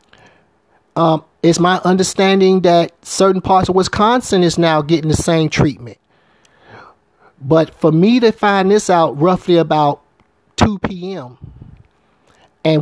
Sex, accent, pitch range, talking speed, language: male, American, 130-185 Hz, 125 wpm, English